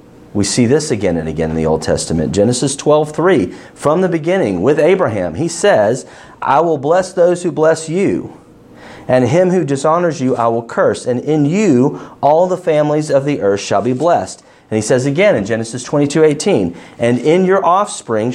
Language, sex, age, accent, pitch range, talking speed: English, male, 40-59, American, 110-160 Hz, 195 wpm